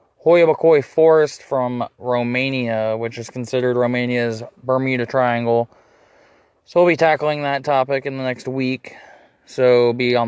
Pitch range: 120-145 Hz